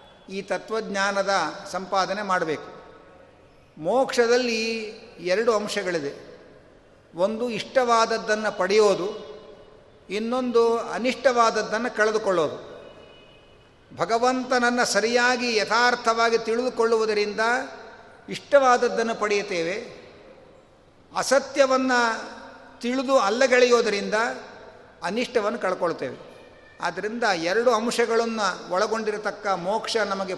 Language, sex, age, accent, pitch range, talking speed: Kannada, male, 50-69, native, 195-240 Hz, 60 wpm